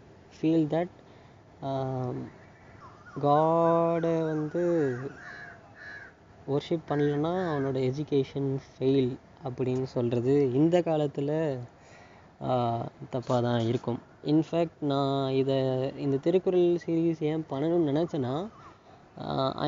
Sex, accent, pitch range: female, native, 130-165 Hz